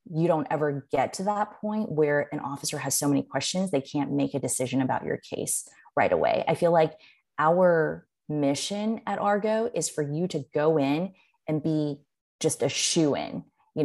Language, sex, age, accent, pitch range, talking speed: English, female, 20-39, American, 140-170 Hz, 190 wpm